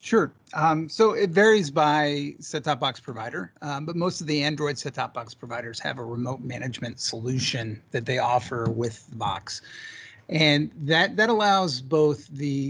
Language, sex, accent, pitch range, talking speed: English, male, American, 130-155 Hz, 165 wpm